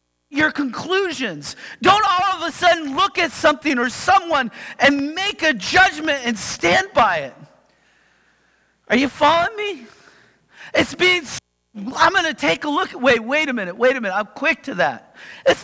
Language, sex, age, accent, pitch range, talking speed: English, male, 40-59, American, 220-320 Hz, 170 wpm